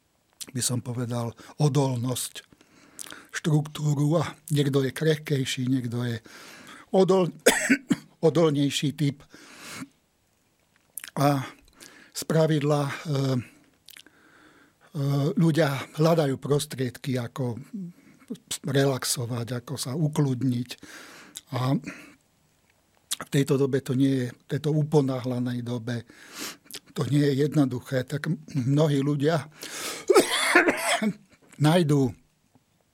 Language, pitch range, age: Slovak, 125-150 Hz, 50-69